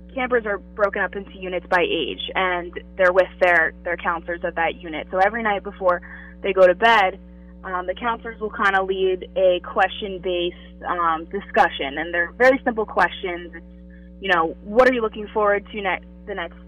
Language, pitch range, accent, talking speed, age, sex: English, 170-200 Hz, American, 190 wpm, 20-39, female